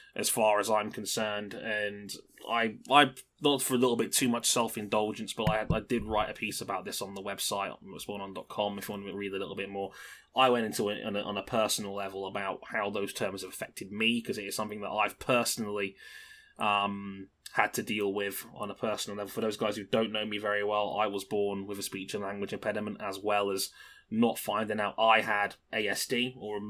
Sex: male